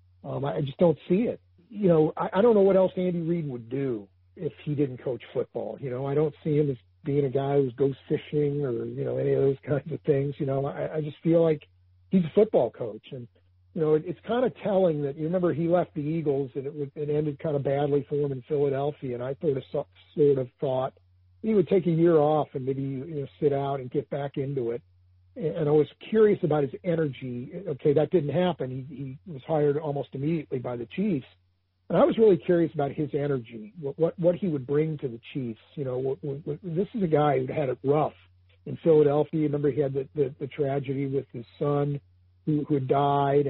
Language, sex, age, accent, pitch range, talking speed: English, male, 50-69, American, 130-155 Hz, 230 wpm